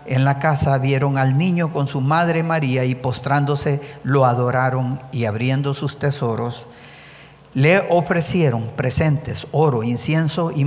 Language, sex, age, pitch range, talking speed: English, male, 50-69, 130-165 Hz, 135 wpm